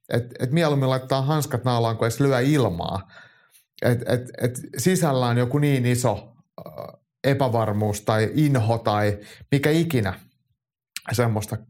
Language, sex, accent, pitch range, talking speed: Finnish, male, native, 105-135 Hz, 130 wpm